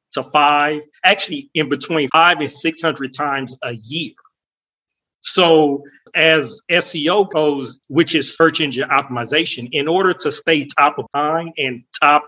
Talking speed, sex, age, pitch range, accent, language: 140 wpm, male, 40-59, 140-170 Hz, American, English